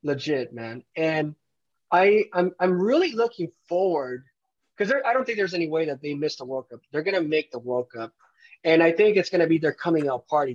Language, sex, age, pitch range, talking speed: English, male, 30-49, 145-190 Hz, 230 wpm